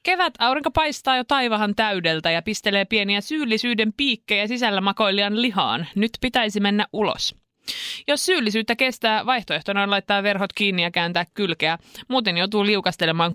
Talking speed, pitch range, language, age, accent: 140 wpm, 180-240 Hz, Finnish, 20-39, native